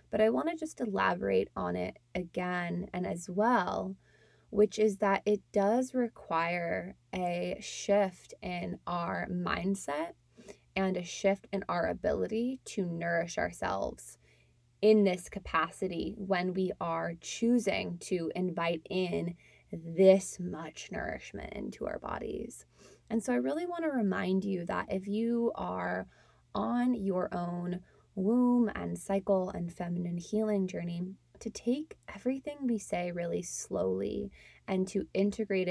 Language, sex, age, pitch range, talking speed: English, female, 20-39, 170-205 Hz, 135 wpm